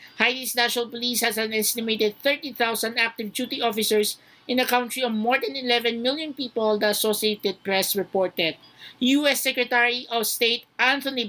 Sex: male